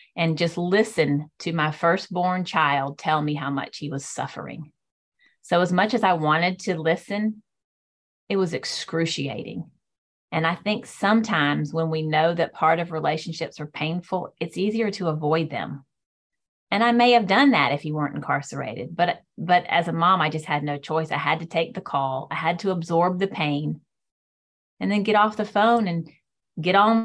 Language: English